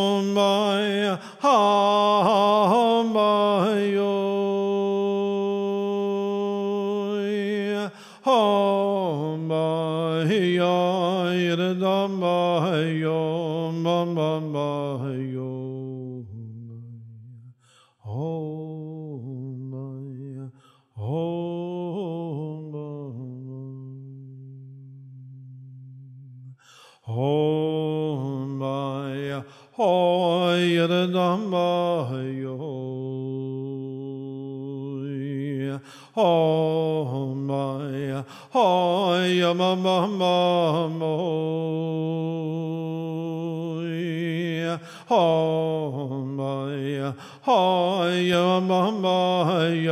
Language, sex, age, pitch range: Hebrew, male, 50-69, 135-180 Hz